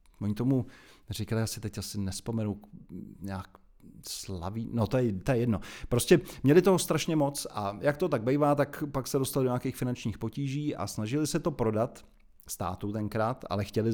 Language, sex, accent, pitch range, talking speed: Czech, male, native, 105-135 Hz, 185 wpm